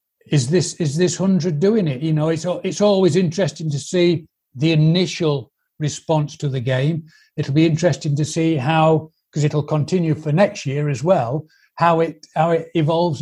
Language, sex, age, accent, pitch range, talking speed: English, male, 60-79, British, 150-185 Hz, 180 wpm